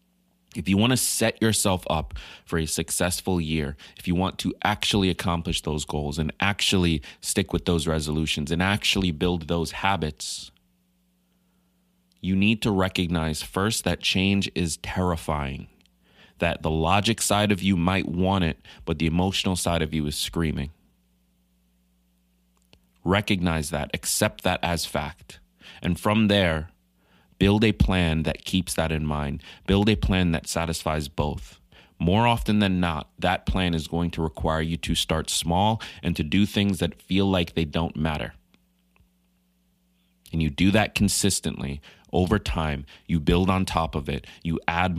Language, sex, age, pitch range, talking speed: English, male, 30-49, 75-95 Hz, 155 wpm